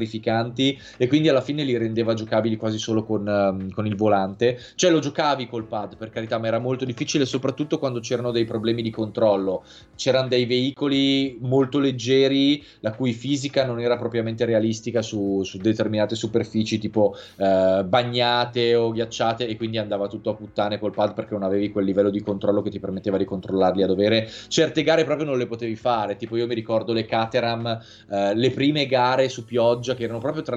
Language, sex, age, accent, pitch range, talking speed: Italian, male, 20-39, native, 110-145 Hz, 190 wpm